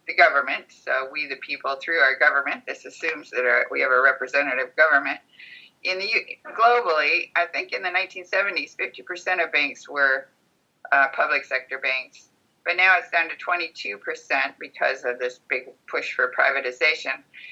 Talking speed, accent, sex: 165 wpm, American, female